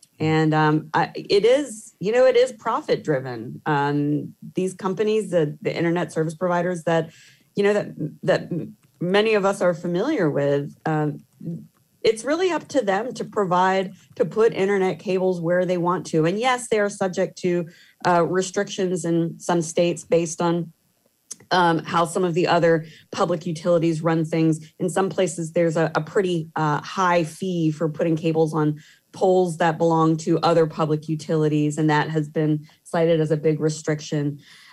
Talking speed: 165 wpm